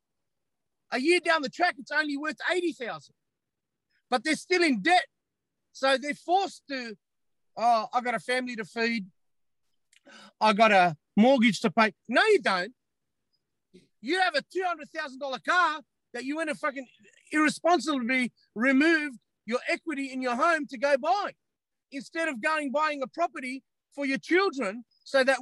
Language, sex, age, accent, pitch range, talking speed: English, male, 40-59, Australian, 230-310 Hz, 155 wpm